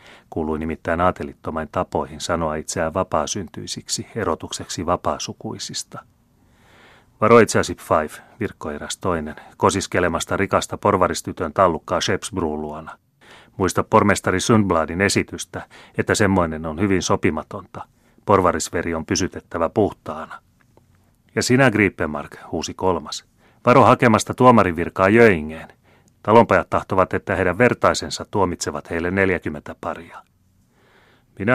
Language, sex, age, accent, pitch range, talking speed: Finnish, male, 30-49, native, 85-110 Hz, 100 wpm